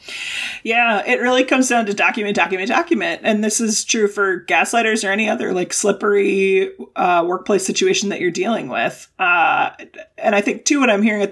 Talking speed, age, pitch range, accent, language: 190 wpm, 30-49, 190-235 Hz, American, English